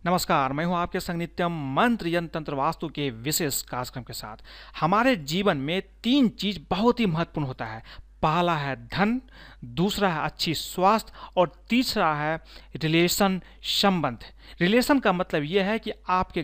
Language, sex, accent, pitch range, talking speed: Hindi, male, native, 155-195 Hz, 155 wpm